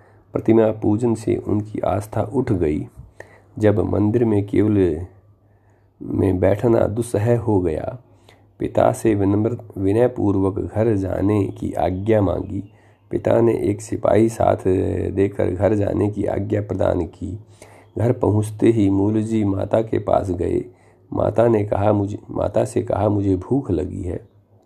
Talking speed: 135 wpm